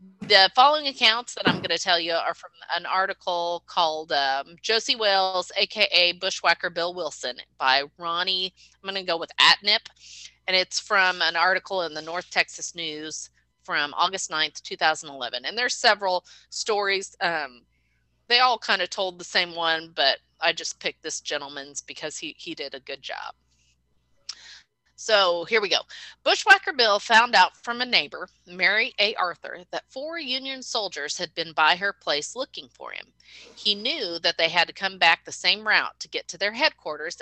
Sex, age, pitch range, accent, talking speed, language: female, 30-49, 160-225 Hz, American, 180 wpm, English